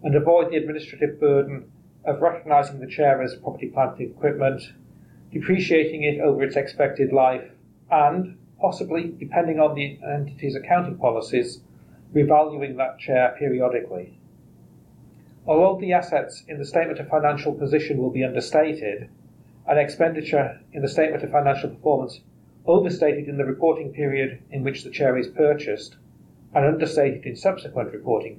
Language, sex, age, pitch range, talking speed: English, male, 40-59, 130-155 Hz, 140 wpm